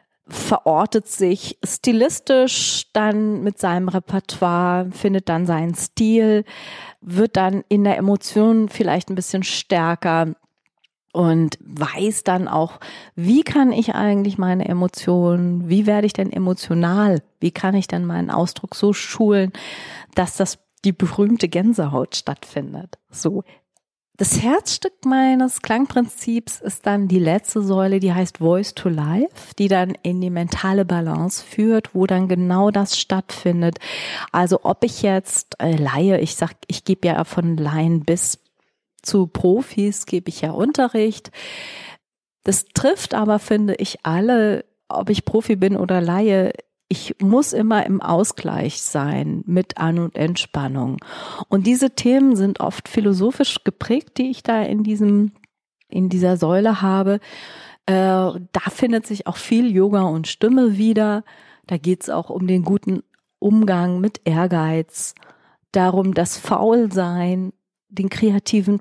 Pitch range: 175-215 Hz